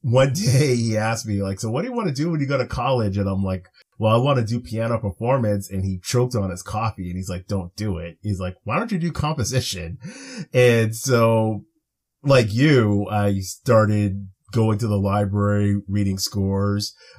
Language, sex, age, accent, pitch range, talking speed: English, male, 30-49, American, 100-120 Hz, 205 wpm